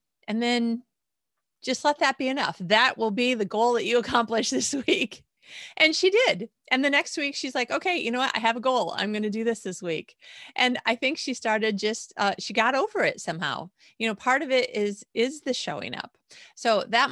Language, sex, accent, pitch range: English, female, American, 175-240 Hz